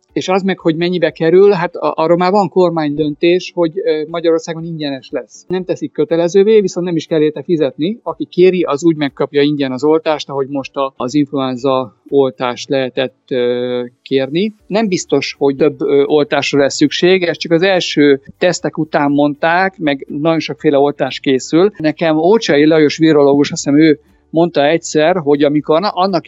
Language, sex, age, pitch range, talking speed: Hungarian, male, 50-69, 145-180 Hz, 160 wpm